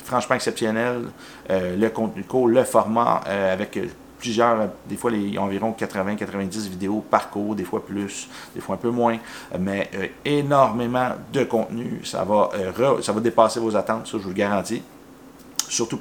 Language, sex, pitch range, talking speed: French, male, 100-120 Hz, 160 wpm